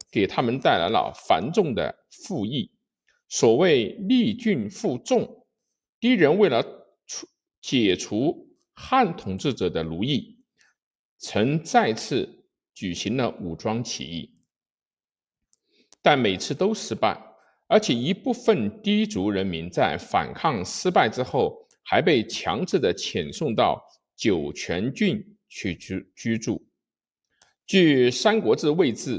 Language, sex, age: Chinese, male, 50-69